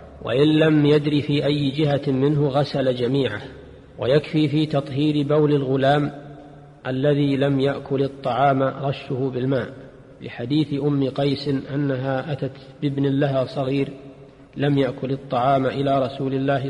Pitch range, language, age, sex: 130-145 Hz, Arabic, 40-59, male